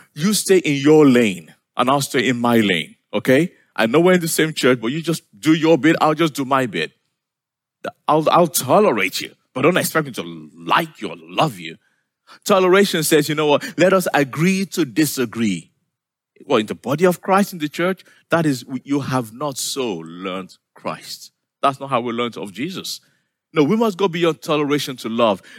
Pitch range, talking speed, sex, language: 125-175 Hz, 200 wpm, male, English